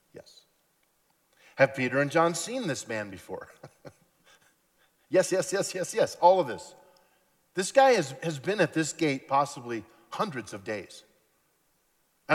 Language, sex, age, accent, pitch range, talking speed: English, male, 40-59, American, 140-195 Hz, 140 wpm